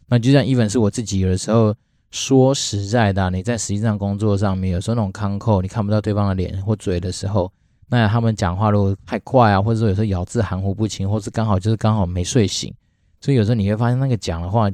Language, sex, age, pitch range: Chinese, male, 20-39, 95-110 Hz